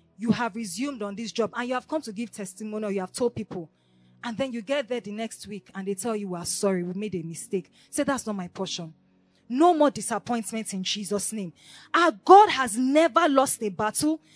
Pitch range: 210-295 Hz